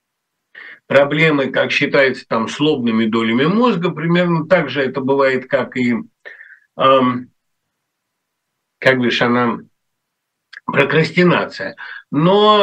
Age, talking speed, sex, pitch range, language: 50-69, 100 wpm, male, 130-195 Hz, Russian